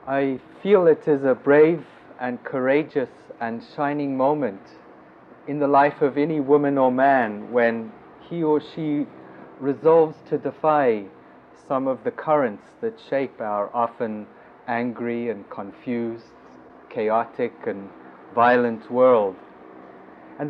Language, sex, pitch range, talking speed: English, male, 115-155 Hz, 125 wpm